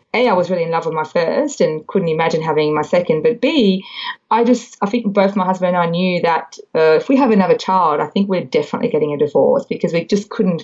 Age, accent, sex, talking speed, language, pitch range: 20-39, Australian, female, 255 wpm, English, 160-235 Hz